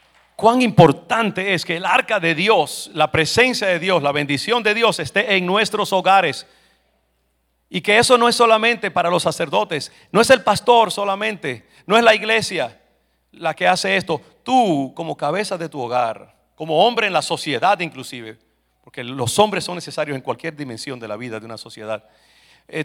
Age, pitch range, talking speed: 50-69, 115-175 Hz, 180 wpm